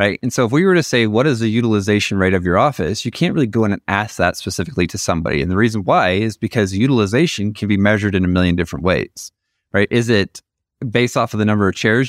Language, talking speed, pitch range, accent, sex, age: English, 260 wpm, 95-115 Hz, American, male, 20-39